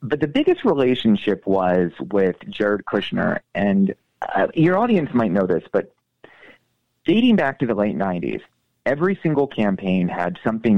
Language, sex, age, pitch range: English, male, 30-49, 95-125 Hz